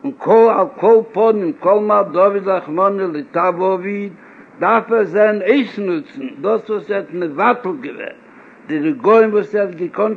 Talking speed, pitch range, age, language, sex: 110 wpm, 200-245 Hz, 60-79, Hebrew, male